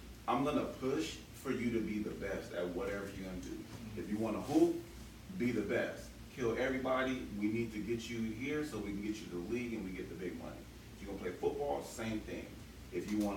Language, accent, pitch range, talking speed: English, American, 95-115 Hz, 255 wpm